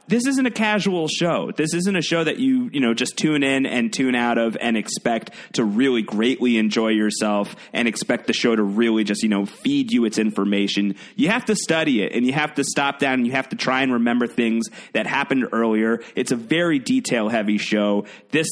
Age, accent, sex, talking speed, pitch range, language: 30-49, American, male, 225 wpm, 110-150 Hz, English